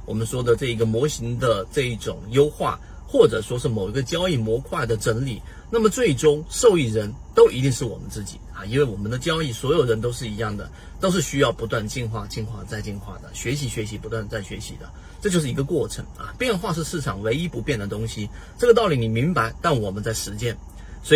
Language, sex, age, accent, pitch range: Chinese, male, 30-49, native, 110-155 Hz